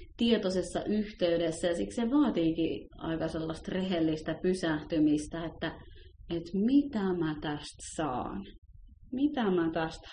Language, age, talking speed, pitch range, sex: Finnish, 30-49, 115 wpm, 165-225 Hz, female